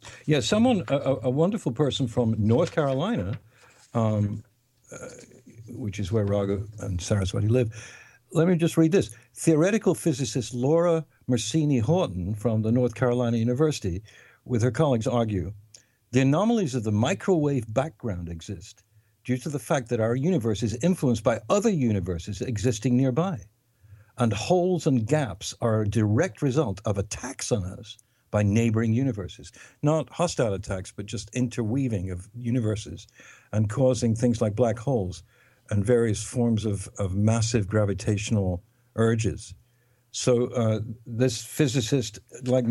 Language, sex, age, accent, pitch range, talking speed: English, male, 60-79, American, 105-130 Hz, 140 wpm